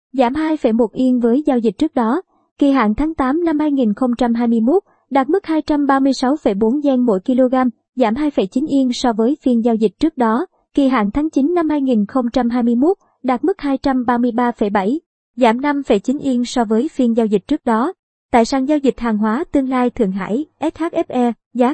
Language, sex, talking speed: Vietnamese, male, 170 wpm